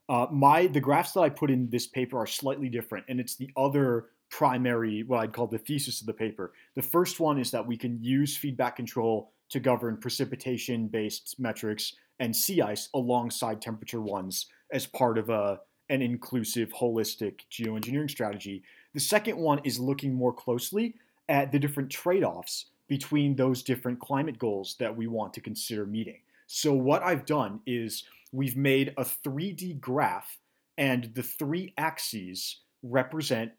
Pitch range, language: 115-140 Hz, English